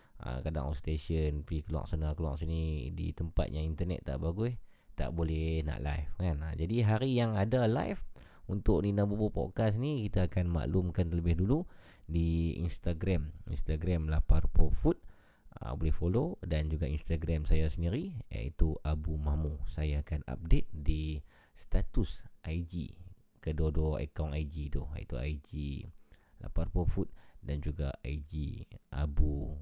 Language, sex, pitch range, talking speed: Malay, male, 75-95 Hz, 130 wpm